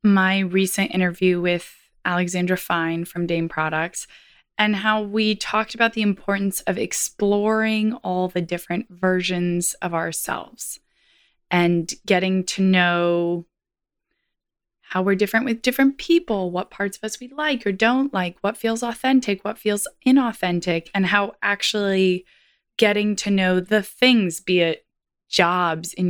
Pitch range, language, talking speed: 175-220 Hz, English, 140 wpm